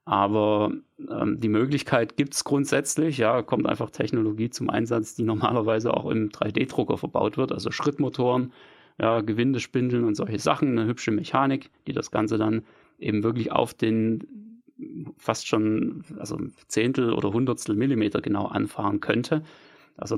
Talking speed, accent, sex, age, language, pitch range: 145 wpm, German, male, 30-49, German, 105-125 Hz